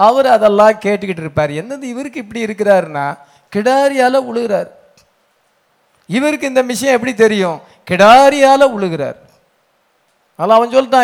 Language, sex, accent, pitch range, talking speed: English, male, Indian, 160-235 Hz, 130 wpm